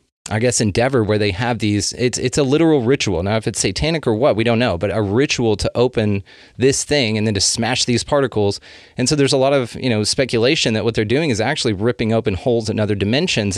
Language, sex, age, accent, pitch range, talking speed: English, male, 30-49, American, 105-125 Hz, 245 wpm